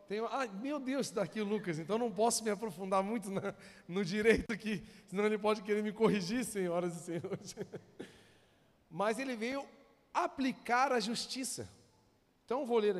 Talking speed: 155 wpm